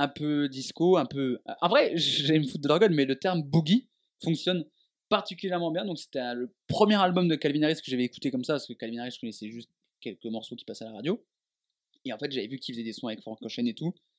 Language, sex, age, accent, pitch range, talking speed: French, male, 20-39, French, 130-180 Hz, 250 wpm